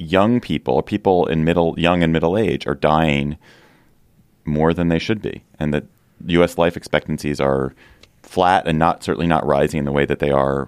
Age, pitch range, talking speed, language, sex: 30-49, 70-90 Hz, 190 wpm, English, male